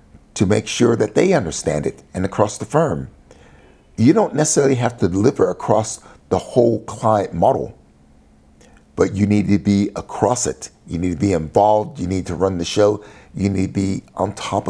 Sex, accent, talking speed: male, American, 190 wpm